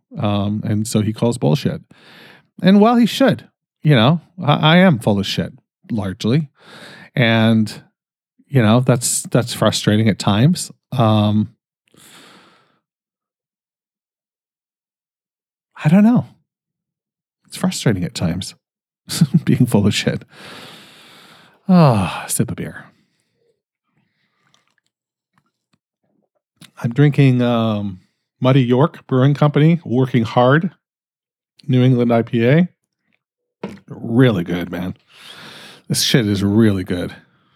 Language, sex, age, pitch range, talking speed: English, male, 40-59, 110-170 Hz, 105 wpm